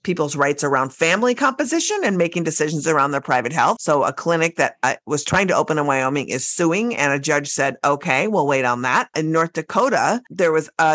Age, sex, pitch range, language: 50-69, female, 130-165 Hz, English